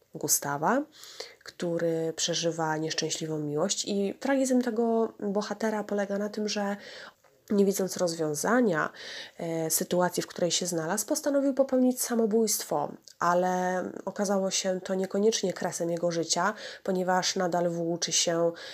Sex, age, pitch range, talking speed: female, 20-39, 165-205 Hz, 115 wpm